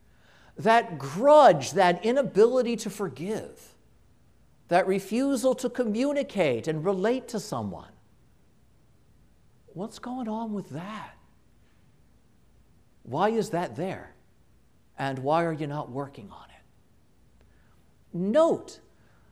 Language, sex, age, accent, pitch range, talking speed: English, male, 50-69, American, 130-210 Hz, 100 wpm